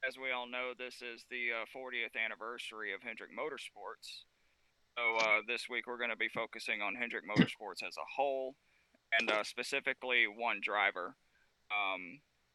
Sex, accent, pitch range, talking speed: male, American, 110-130 Hz, 165 wpm